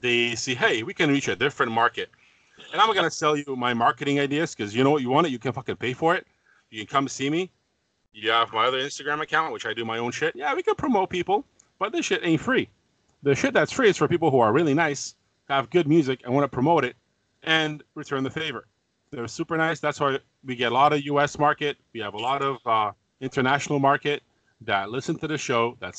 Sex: male